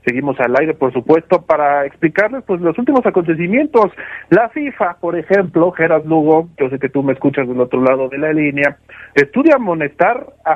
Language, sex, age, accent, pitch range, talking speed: Spanish, male, 40-59, Mexican, 135-180 Hz, 180 wpm